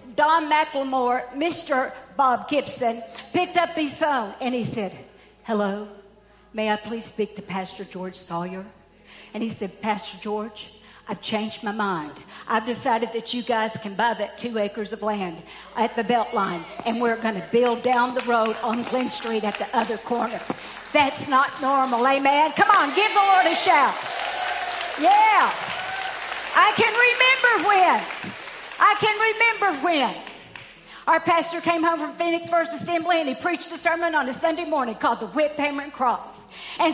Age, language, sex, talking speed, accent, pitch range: 60-79, English, female, 170 wpm, American, 225-340 Hz